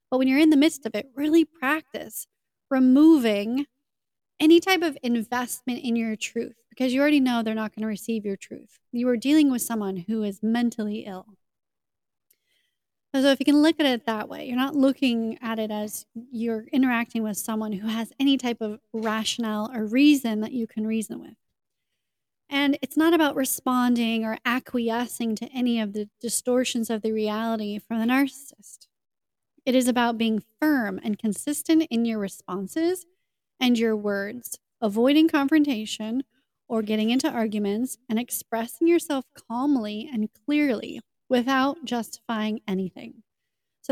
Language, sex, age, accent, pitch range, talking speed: English, female, 30-49, American, 220-270 Hz, 160 wpm